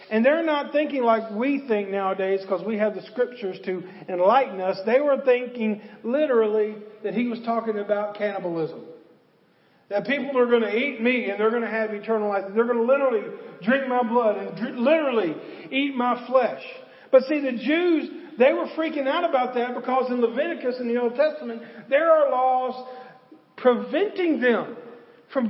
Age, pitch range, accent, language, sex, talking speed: 40-59, 205-270 Hz, American, English, male, 175 wpm